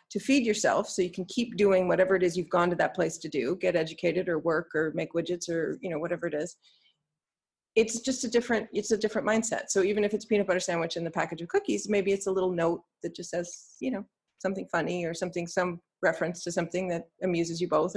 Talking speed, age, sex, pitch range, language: 245 wpm, 40-59, female, 170-225 Hz, English